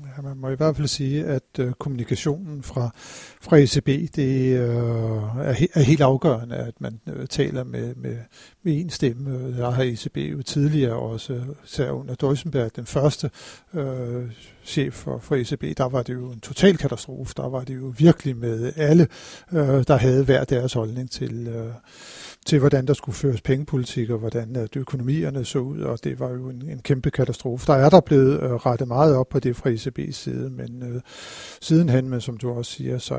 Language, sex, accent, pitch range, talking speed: Danish, male, native, 125-150 Hz, 195 wpm